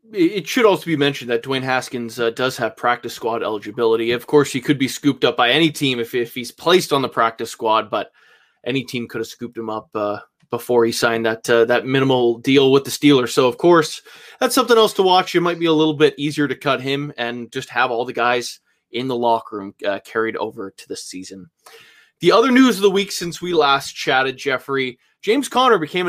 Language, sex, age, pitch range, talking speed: English, male, 20-39, 125-165 Hz, 230 wpm